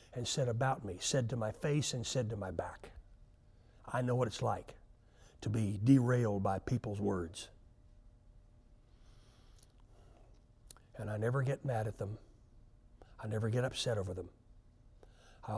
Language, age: English, 60-79